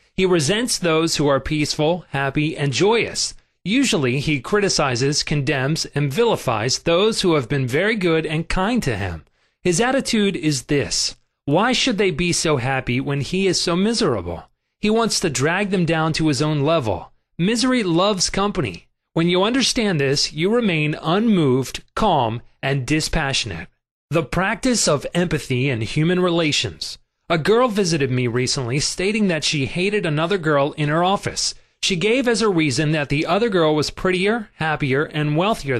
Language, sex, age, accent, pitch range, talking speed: English, male, 30-49, American, 140-190 Hz, 165 wpm